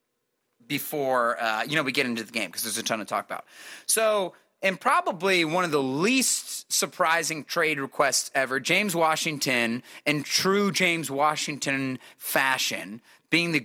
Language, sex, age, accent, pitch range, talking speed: English, male, 30-49, American, 140-195 Hz, 160 wpm